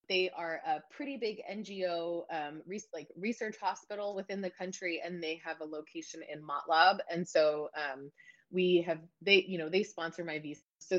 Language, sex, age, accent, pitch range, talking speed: English, female, 20-39, American, 160-200 Hz, 185 wpm